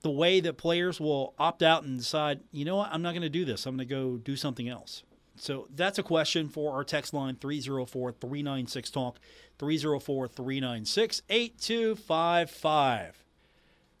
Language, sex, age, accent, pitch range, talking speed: English, male, 40-59, American, 145-200 Hz, 150 wpm